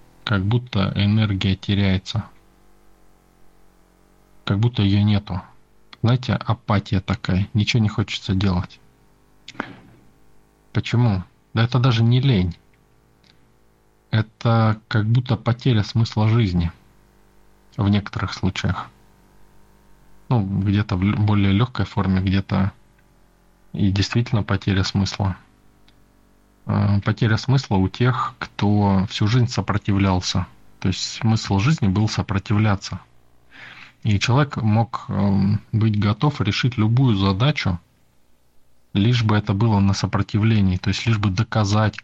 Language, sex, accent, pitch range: Russian, male, native, 100-115 Hz